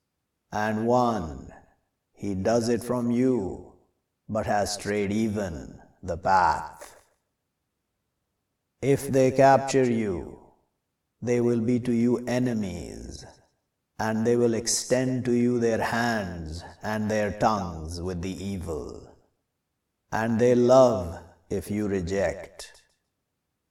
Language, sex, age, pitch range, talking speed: English, male, 50-69, 100-125 Hz, 110 wpm